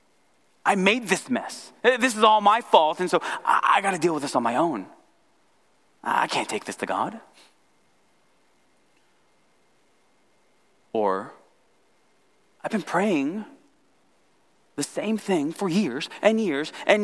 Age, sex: 30-49, male